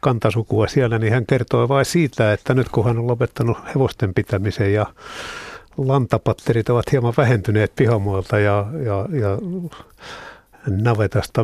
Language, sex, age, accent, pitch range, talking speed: Finnish, male, 60-79, native, 110-135 Hz, 130 wpm